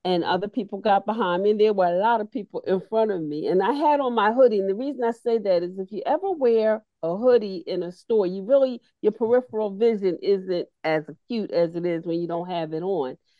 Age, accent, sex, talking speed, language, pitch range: 40-59, American, female, 250 wpm, English, 180-230 Hz